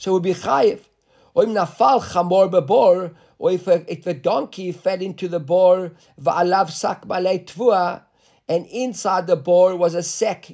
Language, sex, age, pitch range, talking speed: English, male, 50-69, 165-215 Hz, 125 wpm